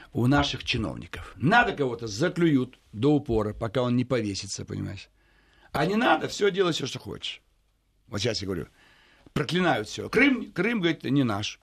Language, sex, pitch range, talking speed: Russian, male, 110-165 Hz, 165 wpm